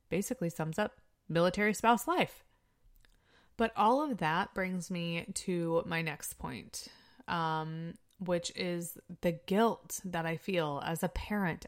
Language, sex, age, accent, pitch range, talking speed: English, female, 20-39, American, 160-195 Hz, 140 wpm